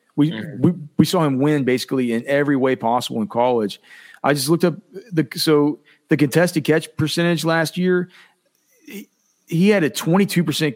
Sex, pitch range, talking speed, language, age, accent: male, 130-160 Hz, 165 wpm, English, 40-59, American